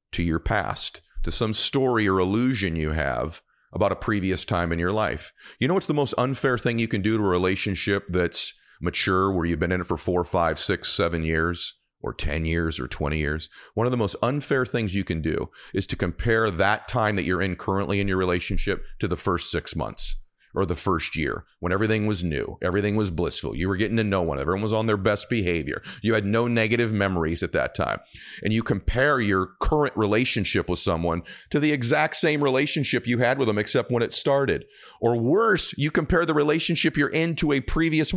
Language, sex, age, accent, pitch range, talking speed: English, male, 40-59, American, 95-145 Hz, 215 wpm